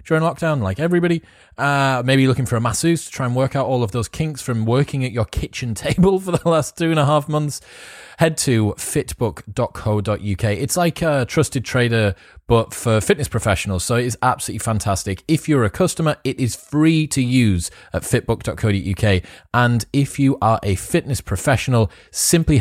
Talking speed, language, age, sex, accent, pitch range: 185 wpm, English, 20-39, male, British, 95-130 Hz